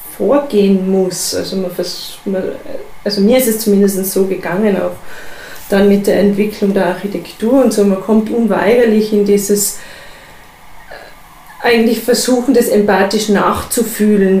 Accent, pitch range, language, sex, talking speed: German, 195-220 Hz, German, female, 120 wpm